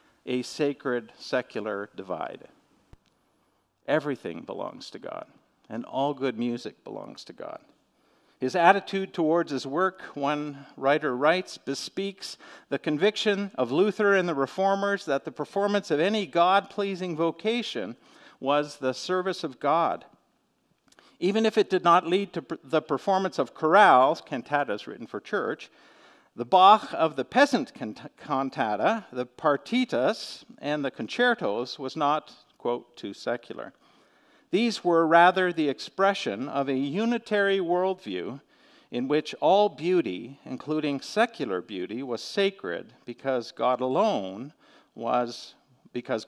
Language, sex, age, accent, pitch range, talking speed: English, male, 50-69, American, 130-195 Hz, 125 wpm